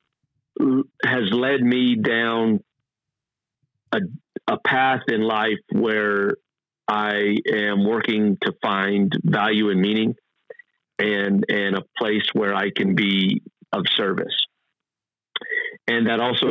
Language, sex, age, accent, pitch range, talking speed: English, male, 50-69, American, 95-125 Hz, 115 wpm